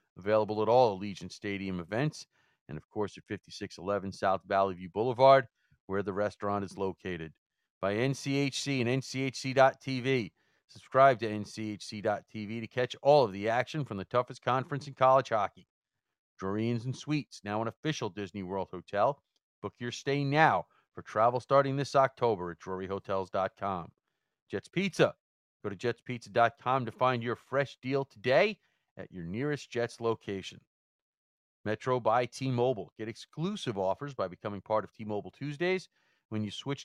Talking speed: 150 wpm